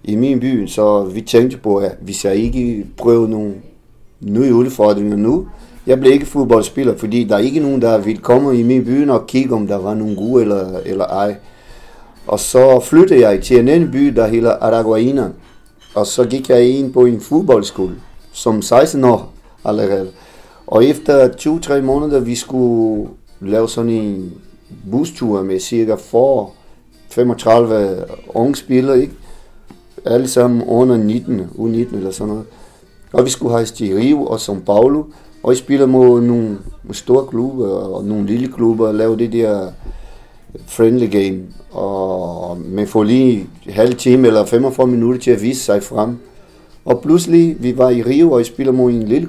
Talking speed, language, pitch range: 170 wpm, Danish, 105-125 Hz